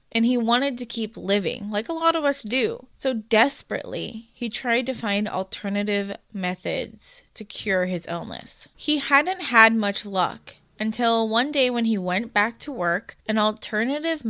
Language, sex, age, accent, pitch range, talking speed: English, female, 20-39, American, 185-230 Hz, 170 wpm